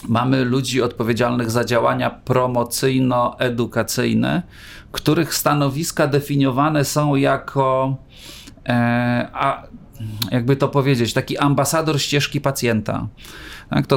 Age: 30-49